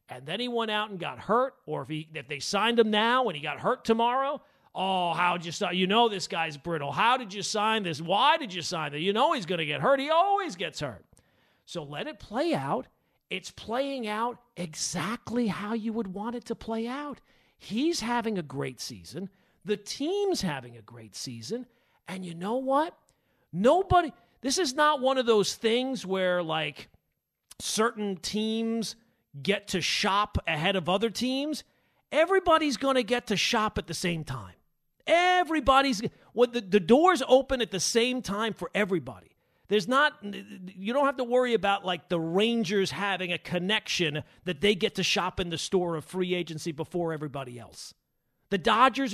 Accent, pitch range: American, 175-240 Hz